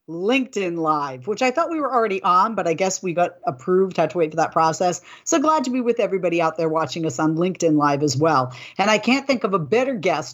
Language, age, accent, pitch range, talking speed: English, 50-69, American, 165-220 Hz, 255 wpm